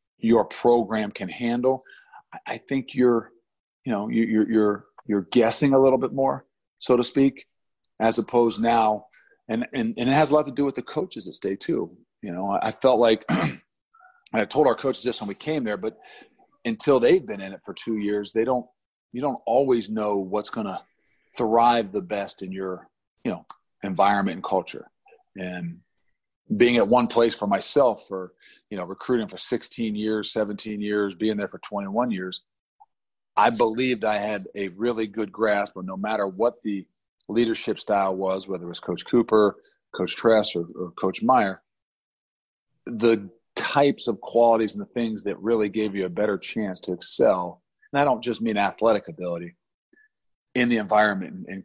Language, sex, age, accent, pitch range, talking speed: English, male, 40-59, American, 100-120 Hz, 180 wpm